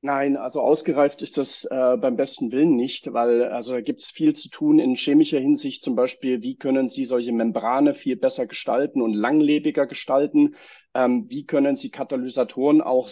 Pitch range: 130-175 Hz